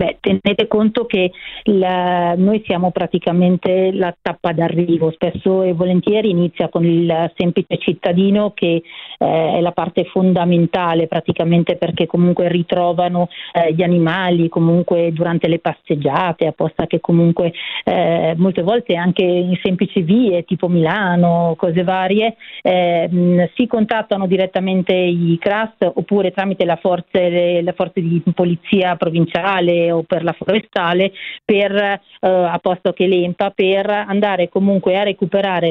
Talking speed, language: 135 wpm, Italian